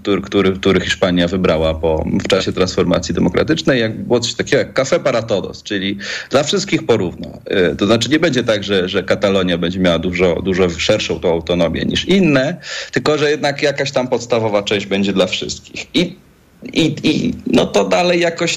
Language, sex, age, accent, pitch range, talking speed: Polish, male, 40-59, native, 95-155 Hz, 175 wpm